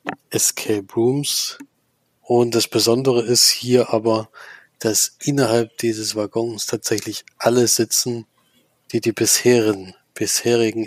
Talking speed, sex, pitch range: 105 wpm, male, 110-120 Hz